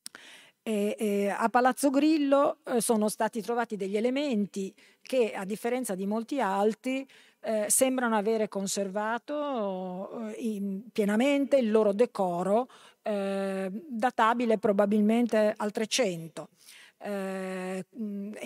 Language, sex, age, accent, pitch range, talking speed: Italian, female, 40-59, native, 195-225 Hz, 95 wpm